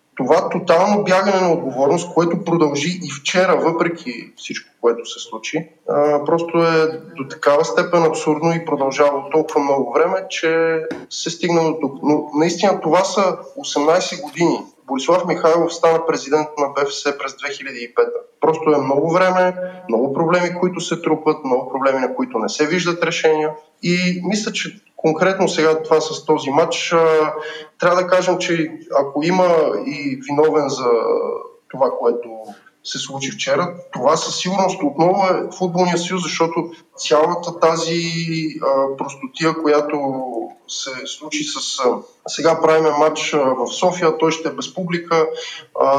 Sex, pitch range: male, 150-180 Hz